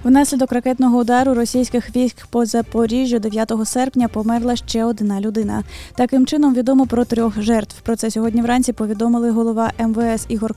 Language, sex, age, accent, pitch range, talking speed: Ukrainian, female, 20-39, native, 215-250 Hz, 155 wpm